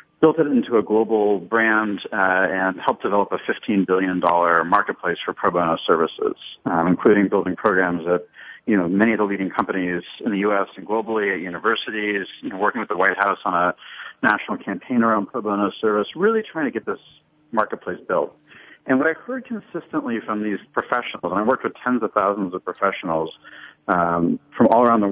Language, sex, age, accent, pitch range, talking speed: English, male, 50-69, American, 95-125 Hz, 195 wpm